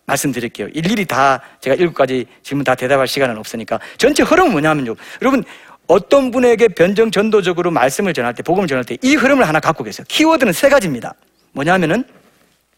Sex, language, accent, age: male, Korean, native, 40-59